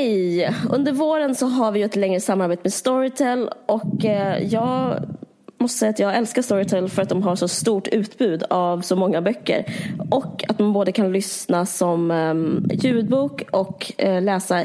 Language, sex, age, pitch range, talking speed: Swedish, female, 20-39, 190-250 Hz, 155 wpm